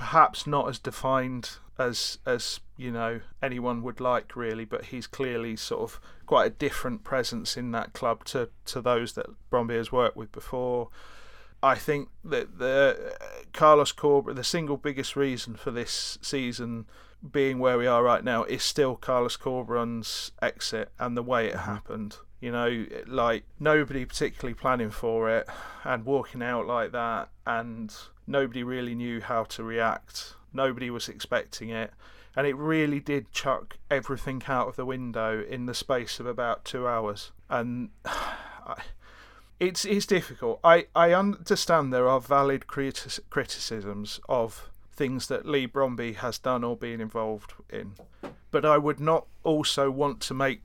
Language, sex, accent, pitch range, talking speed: English, male, British, 115-140 Hz, 160 wpm